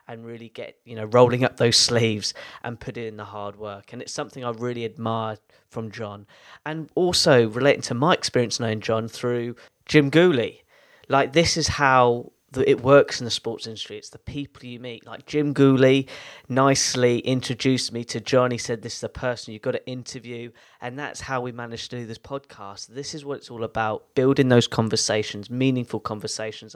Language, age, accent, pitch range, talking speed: English, 20-39, British, 110-130 Hz, 195 wpm